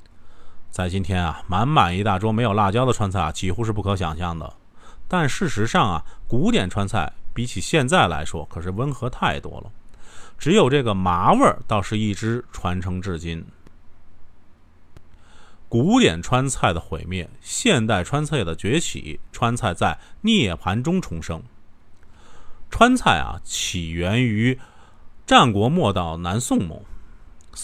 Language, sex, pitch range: Chinese, male, 85-120 Hz